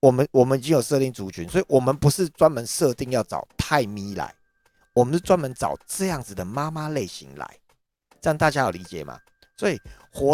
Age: 50-69